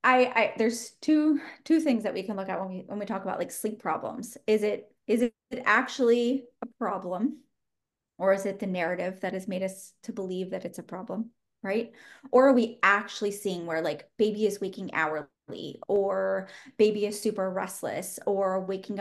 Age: 20-39